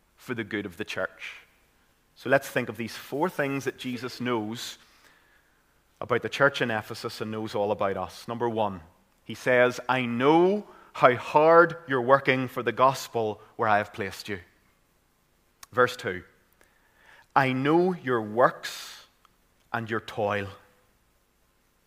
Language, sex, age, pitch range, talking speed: English, male, 30-49, 110-145 Hz, 145 wpm